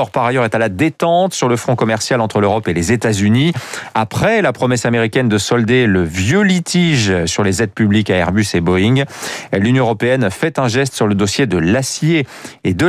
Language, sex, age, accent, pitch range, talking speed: French, male, 40-59, French, 105-145 Hz, 210 wpm